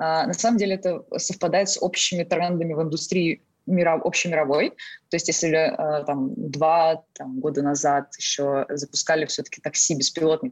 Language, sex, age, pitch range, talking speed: Russian, female, 20-39, 150-185 Hz, 160 wpm